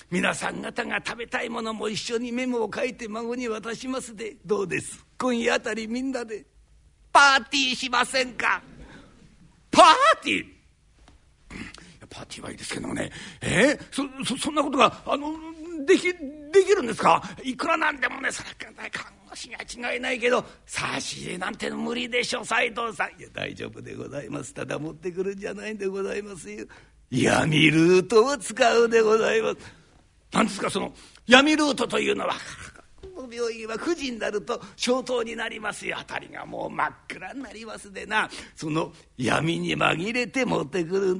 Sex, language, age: male, Japanese, 50-69